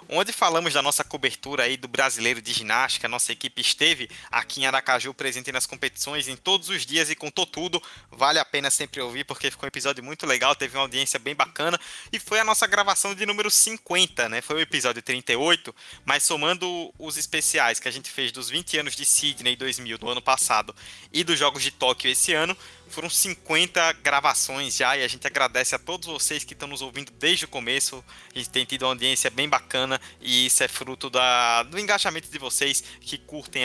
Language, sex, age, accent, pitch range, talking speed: Portuguese, male, 20-39, Brazilian, 125-165 Hz, 205 wpm